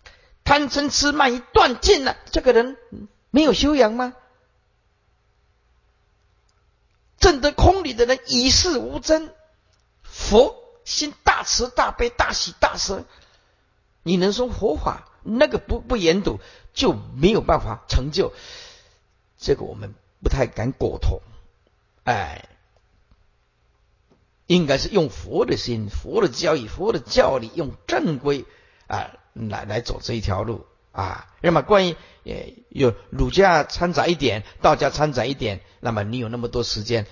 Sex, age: male, 50-69